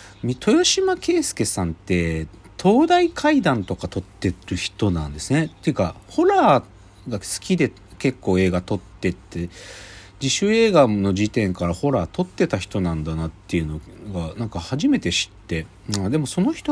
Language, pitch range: Japanese, 90-125 Hz